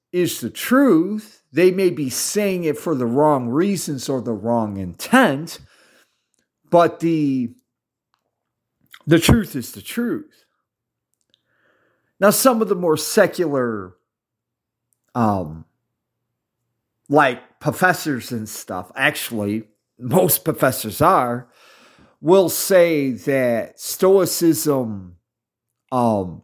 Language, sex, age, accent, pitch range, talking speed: English, male, 50-69, American, 115-165 Hz, 100 wpm